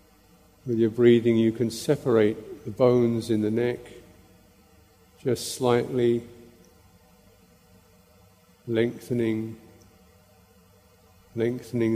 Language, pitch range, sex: English, 95-120 Hz, male